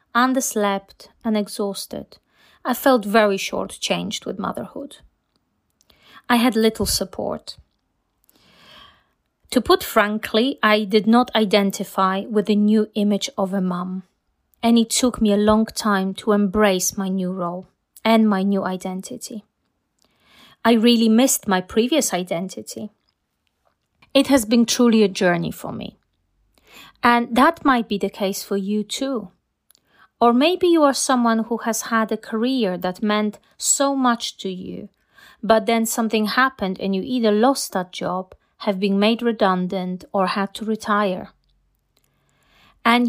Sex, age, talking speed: female, 30-49, 140 wpm